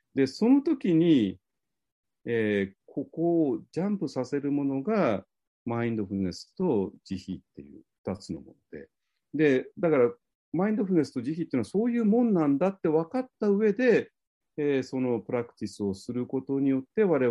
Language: Japanese